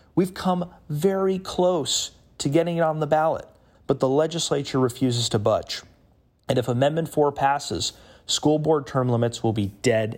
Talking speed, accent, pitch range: 165 wpm, American, 120-170 Hz